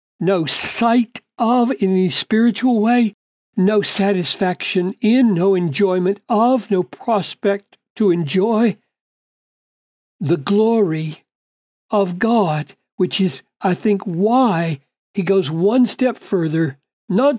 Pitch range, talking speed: 180-220 Hz, 110 wpm